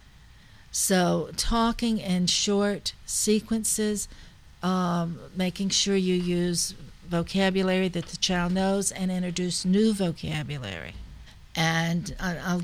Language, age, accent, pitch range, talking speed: English, 60-79, American, 175-210 Hz, 100 wpm